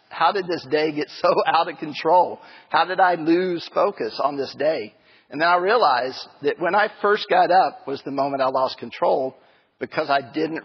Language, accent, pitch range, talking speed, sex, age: English, American, 145-185 Hz, 205 wpm, male, 50-69